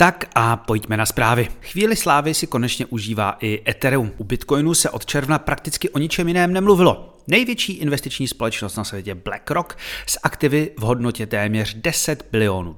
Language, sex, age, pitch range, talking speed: Czech, male, 30-49, 115-160 Hz, 165 wpm